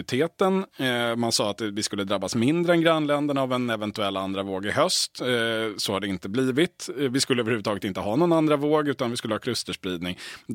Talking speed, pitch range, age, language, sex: 195 wpm, 105-135 Hz, 30-49, Swedish, male